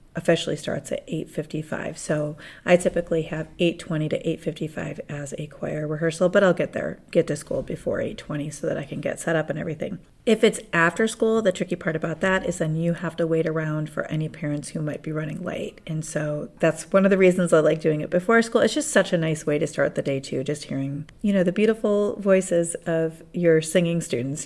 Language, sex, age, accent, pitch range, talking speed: English, female, 30-49, American, 155-185 Hz, 240 wpm